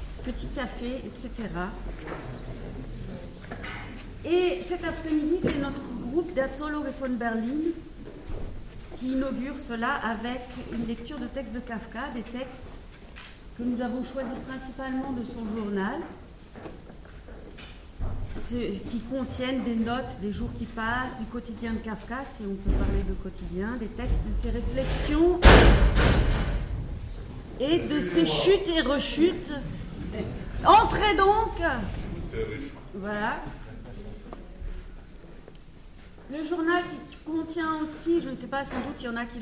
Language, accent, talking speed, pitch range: French, French, 125 wpm, 225-295 Hz